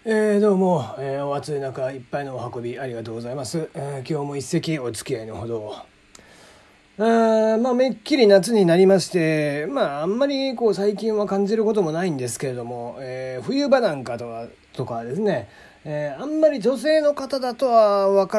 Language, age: Japanese, 30-49